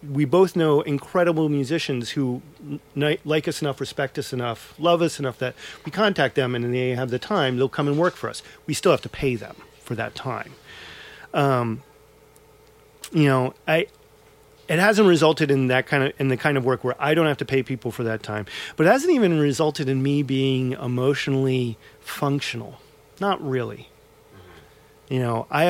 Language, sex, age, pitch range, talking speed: English, male, 40-59, 130-155 Hz, 175 wpm